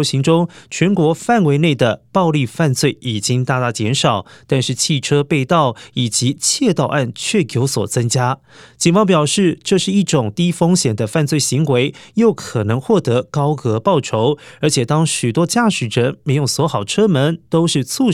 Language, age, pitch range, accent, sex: Chinese, 20-39, 125-165 Hz, native, male